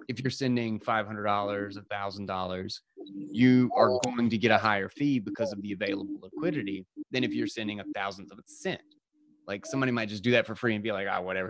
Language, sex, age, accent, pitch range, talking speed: English, male, 20-39, American, 100-120 Hz, 215 wpm